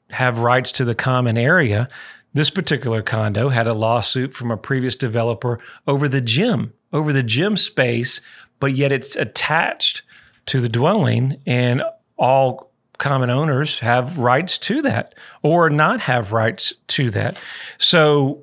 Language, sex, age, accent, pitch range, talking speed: English, male, 40-59, American, 125-155 Hz, 145 wpm